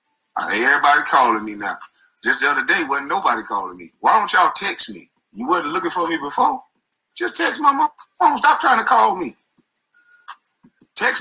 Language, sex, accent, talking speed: English, male, American, 180 wpm